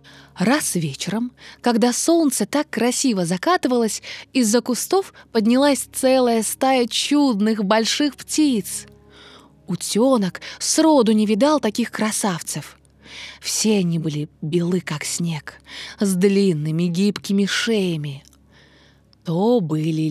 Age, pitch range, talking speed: 20-39, 175-270 Hz, 100 wpm